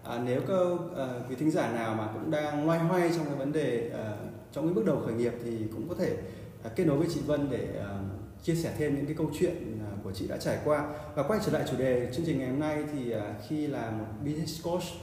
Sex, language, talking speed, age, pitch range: male, Vietnamese, 270 wpm, 20-39, 115-155 Hz